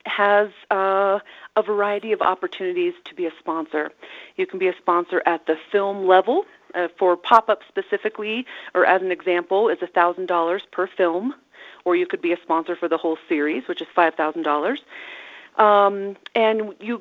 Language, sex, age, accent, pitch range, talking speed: English, female, 40-59, American, 170-205 Hz, 170 wpm